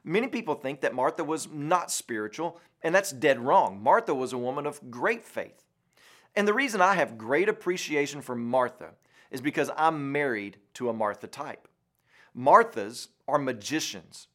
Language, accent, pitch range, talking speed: English, American, 130-175 Hz, 165 wpm